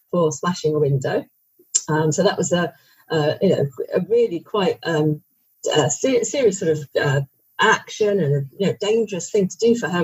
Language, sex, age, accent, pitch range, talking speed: English, female, 40-59, British, 155-195 Hz, 155 wpm